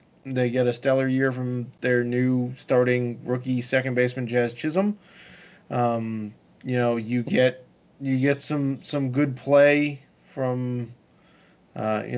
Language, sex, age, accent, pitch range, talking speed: English, male, 20-39, American, 125-155 Hz, 140 wpm